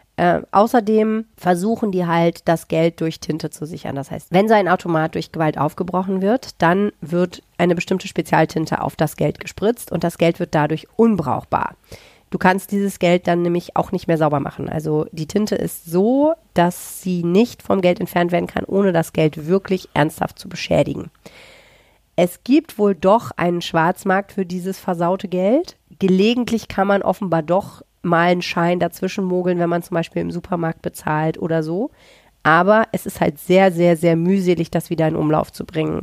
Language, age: German, 40-59